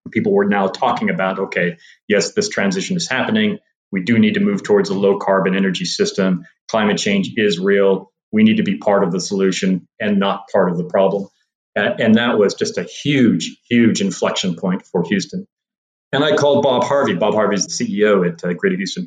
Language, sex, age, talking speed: English, male, 40-59, 205 wpm